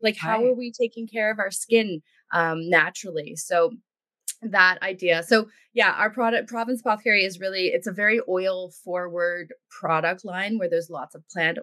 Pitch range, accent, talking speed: 175-230 Hz, American, 175 wpm